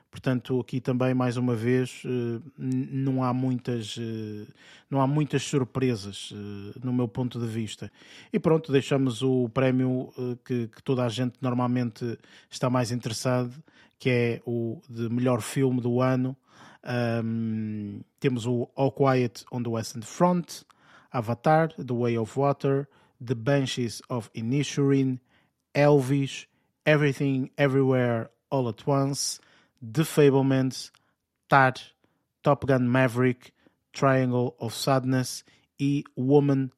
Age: 20-39